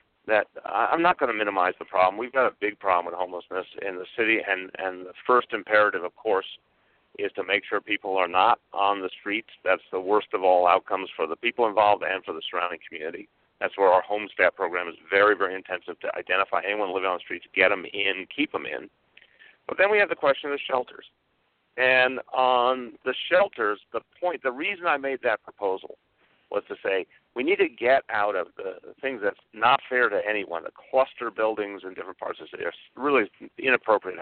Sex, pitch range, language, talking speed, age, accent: male, 95-145 Hz, English, 210 wpm, 50-69, American